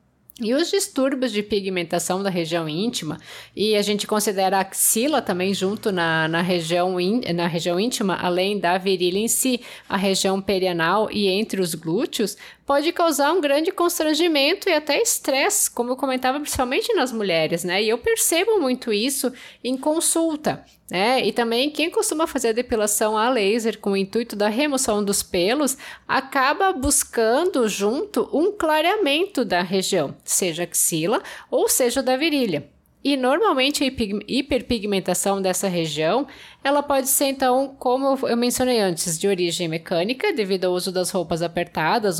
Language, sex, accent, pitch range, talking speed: Portuguese, female, Brazilian, 185-265 Hz, 150 wpm